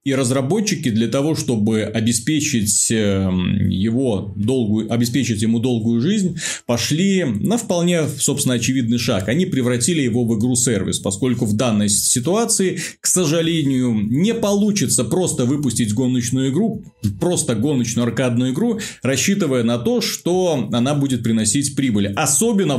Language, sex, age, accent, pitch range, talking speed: Russian, male, 30-49, native, 120-160 Hz, 120 wpm